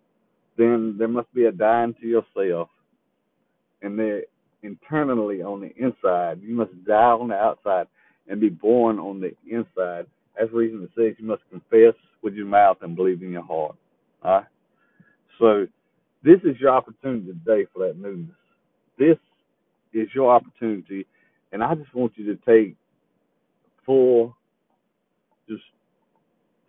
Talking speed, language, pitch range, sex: 145 wpm, English, 95-115 Hz, male